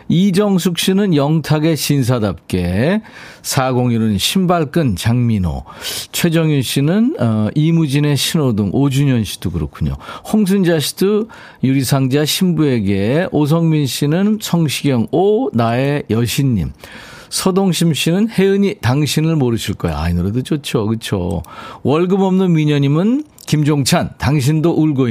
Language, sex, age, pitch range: Korean, male, 40-59, 115-170 Hz